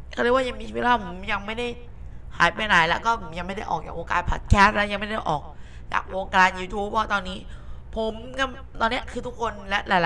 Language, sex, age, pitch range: Thai, female, 20-39, 165-220 Hz